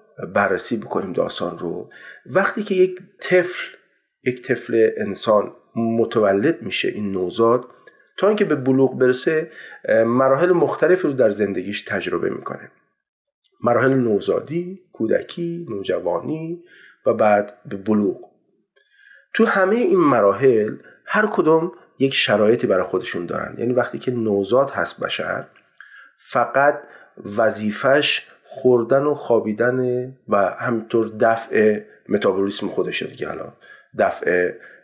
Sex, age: male, 40-59